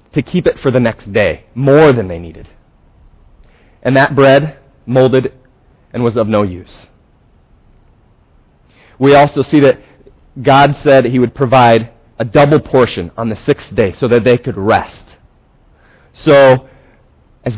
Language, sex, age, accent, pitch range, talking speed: English, male, 30-49, American, 105-135 Hz, 145 wpm